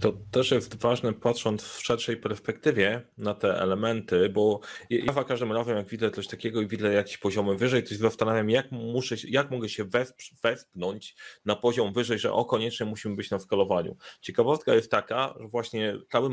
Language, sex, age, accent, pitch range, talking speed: Polish, male, 30-49, native, 105-125 Hz, 185 wpm